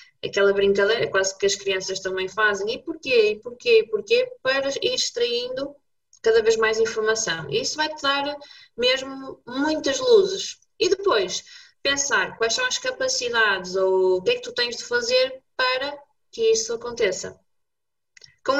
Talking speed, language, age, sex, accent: 160 wpm, Portuguese, 20-39, female, Brazilian